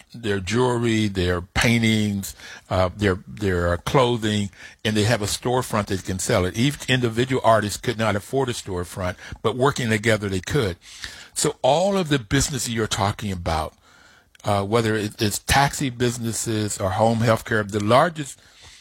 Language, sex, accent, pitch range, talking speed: English, male, American, 95-120 Hz, 155 wpm